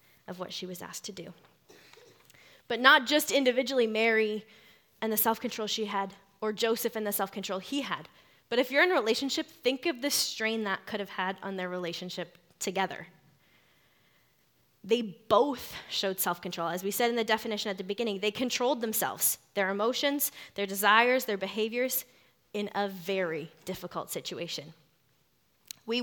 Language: English